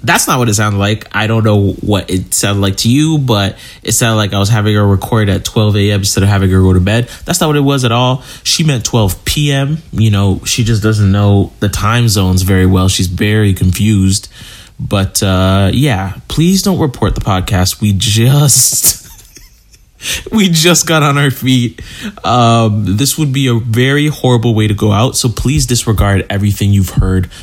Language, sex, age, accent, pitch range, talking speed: English, male, 20-39, American, 95-135 Hz, 200 wpm